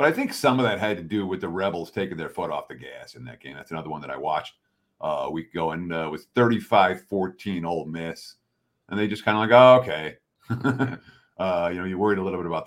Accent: American